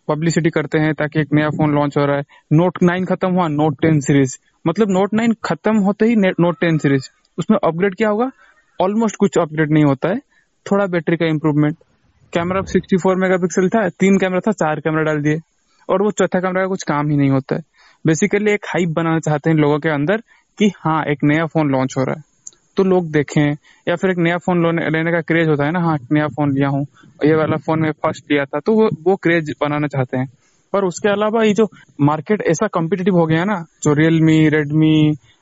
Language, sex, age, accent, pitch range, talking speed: Hindi, male, 20-39, native, 150-190 Hz, 215 wpm